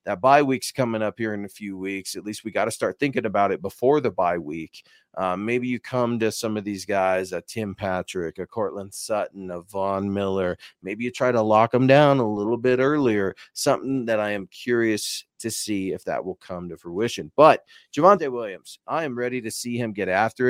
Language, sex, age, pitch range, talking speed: English, male, 30-49, 105-130 Hz, 225 wpm